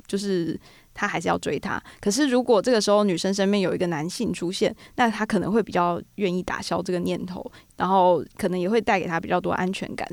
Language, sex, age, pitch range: Chinese, female, 20-39, 180-215 Hz